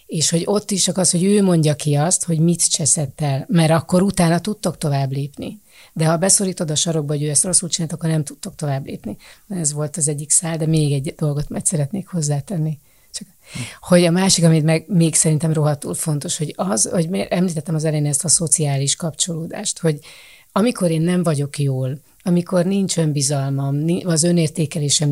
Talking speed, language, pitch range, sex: 185 wpm, Hungarian, 150-180 Hz, female